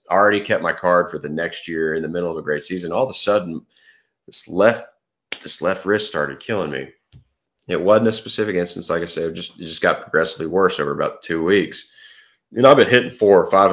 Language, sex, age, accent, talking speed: English, male, 30-49, American, 235 wpm